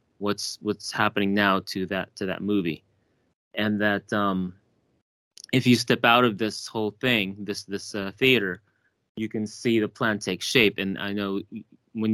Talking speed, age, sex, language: 175 wpm, 20-39, male, English